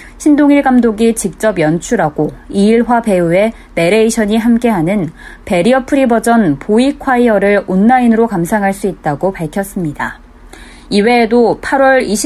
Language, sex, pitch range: Korean, female, 185-245 Hz